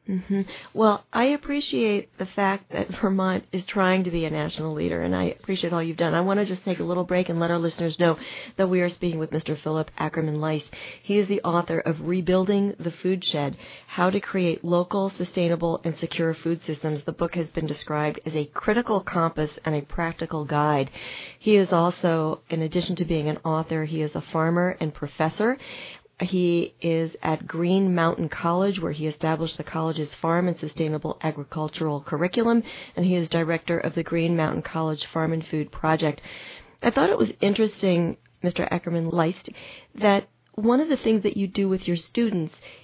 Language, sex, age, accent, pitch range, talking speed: English, female, 40-59, American, 160-195 Hz, 195 wpm